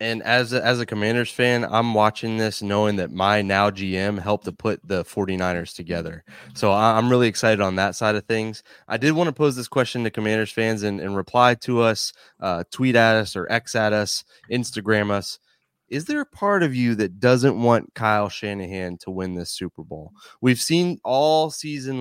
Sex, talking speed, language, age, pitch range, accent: male, 200 wpm, English, 20-39, 100-125 Hz, American